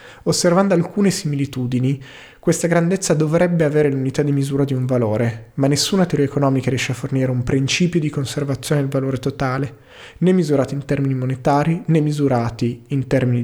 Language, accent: Italian, native